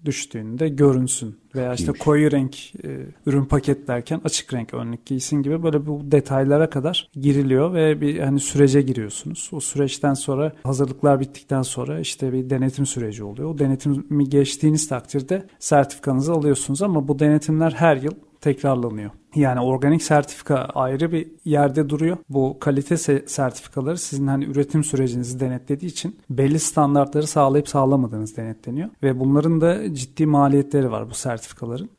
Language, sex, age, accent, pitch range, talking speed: Turkish, male, 40-59, native, 130-150 Hz, 145 wpm